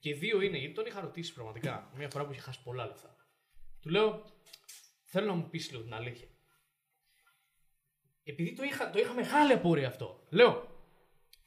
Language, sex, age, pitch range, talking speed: Greek, male, 20-39, 135-175 Hz, 170 wpm